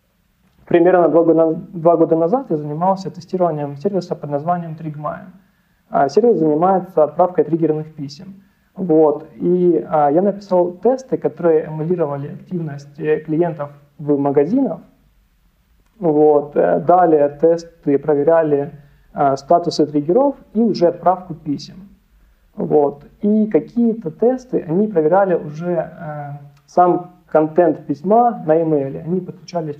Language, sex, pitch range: Ukrainian, male, 150-180 Hz